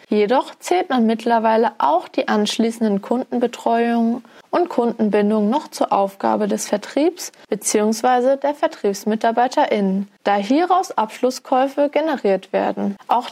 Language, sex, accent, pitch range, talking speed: German, female, German, 215-285 Hz, 110 wpm